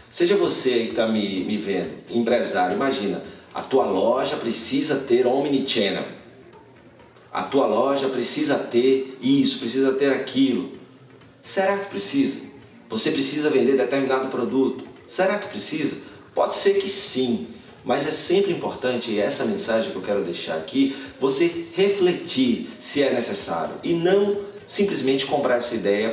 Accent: Brazilian